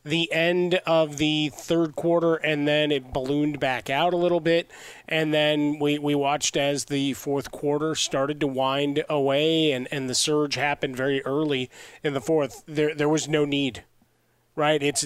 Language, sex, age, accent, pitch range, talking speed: English, male, 30-49, American, 140-160 Hz, 180 wpm